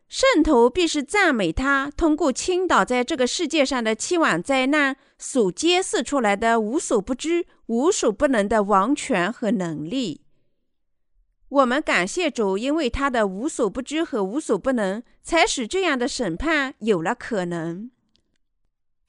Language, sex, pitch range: Chinese, female, 230-330 Hz